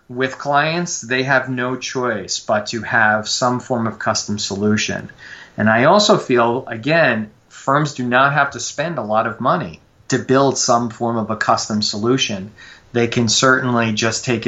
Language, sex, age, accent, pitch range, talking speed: English, male, 30-49, American, 110-125 Hz, 175 wpm